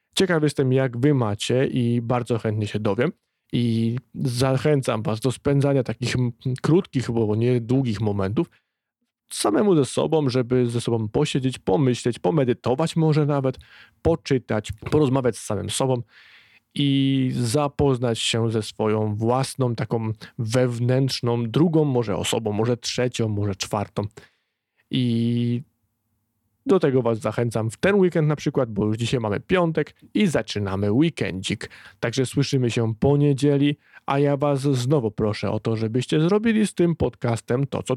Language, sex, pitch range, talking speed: Polish, male, 110-145 Hz, 135 wpm